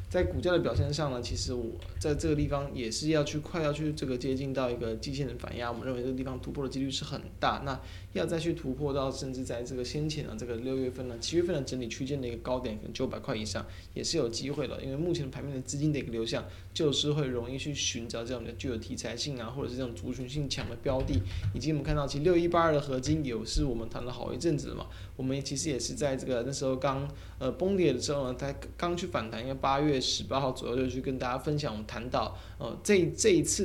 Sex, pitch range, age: male, 115-140 Hz, 20-39